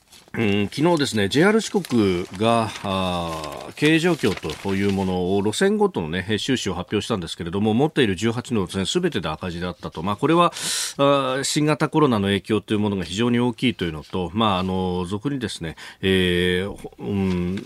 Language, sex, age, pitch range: Japanese, male, 40-59, 95-130 Hz